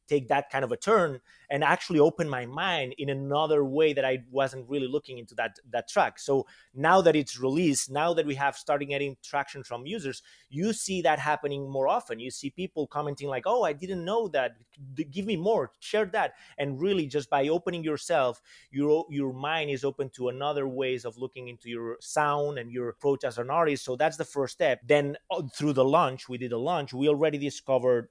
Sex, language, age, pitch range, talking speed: male, English, 30-49, 125-145 Hz, 210 wpm